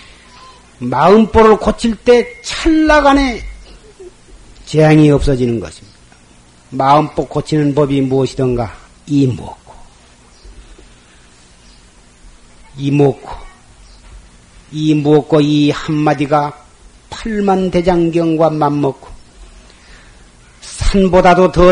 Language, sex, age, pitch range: Korean, male, 40-59, 115-185 Hz